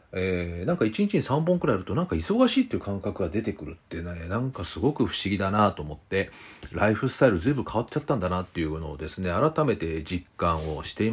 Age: 40-59